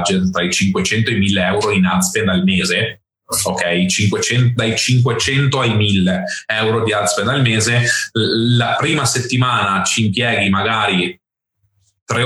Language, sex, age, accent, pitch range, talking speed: Italian, male, 20-39, native, 95-125 Hz, 150 wpm